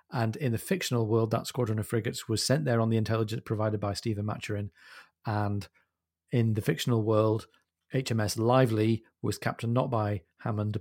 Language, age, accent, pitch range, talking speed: English, 40-59, British, 110-130 Hz, 170 wpm